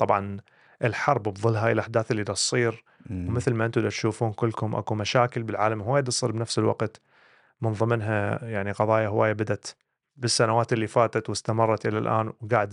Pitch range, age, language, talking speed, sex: 110-135 Hz, 30-49, Arabic, 160 wpm, male